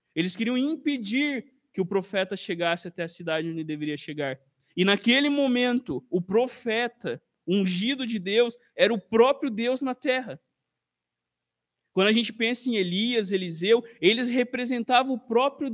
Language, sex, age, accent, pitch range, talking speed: Portuguese, male, 20-39, Brazilian, 190-245 Hz, 150 wpm